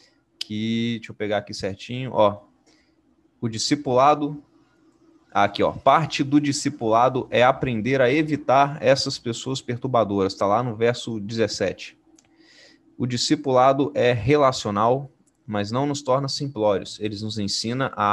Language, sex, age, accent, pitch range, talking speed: Portuguese, male, 20-39, Brazilian, 110-145 Hz, 130 wpm